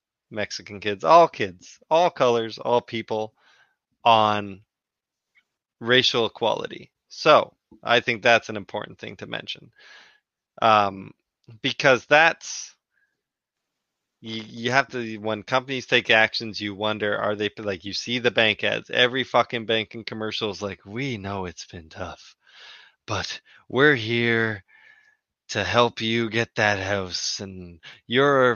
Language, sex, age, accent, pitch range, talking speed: English, male, 20-39, American, 105-120 Hz, 130 wpm